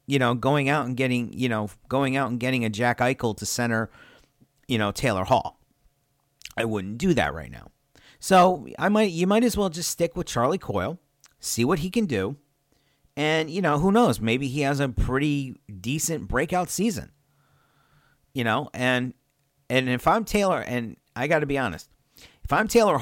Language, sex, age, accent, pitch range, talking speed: English, male, 40-59, American, 120-155 Hz, 190 wpm